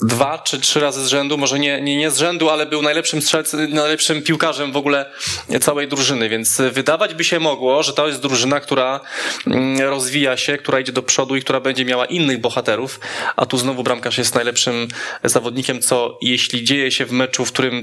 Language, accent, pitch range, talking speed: Polish, native, 130-150 Hz, 200 wpm